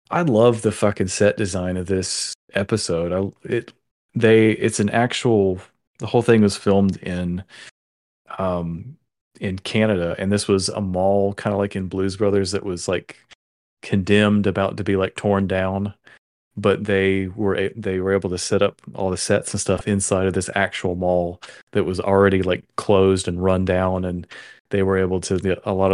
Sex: male